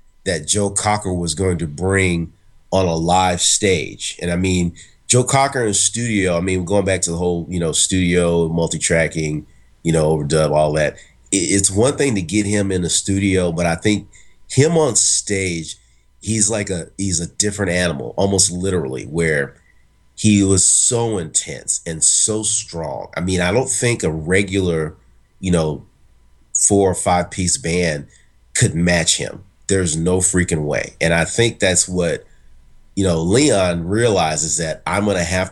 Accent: American